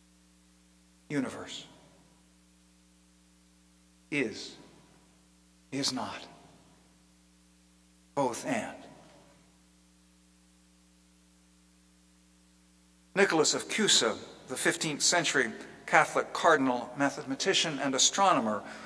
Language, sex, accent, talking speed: English, male, American, 55 wpm